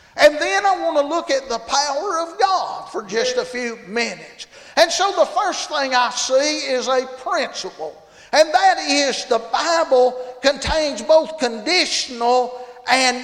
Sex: male